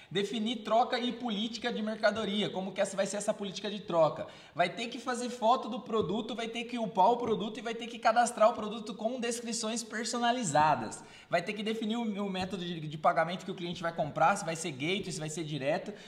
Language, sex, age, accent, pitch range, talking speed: Portuguese, male, 20-39, Brazilian, 180-220 Hz, 230 wpm